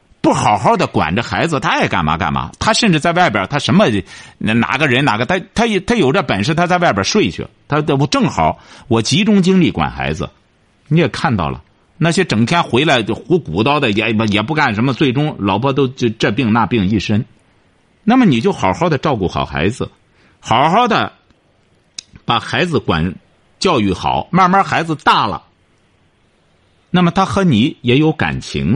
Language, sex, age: Chinese, male, 50-69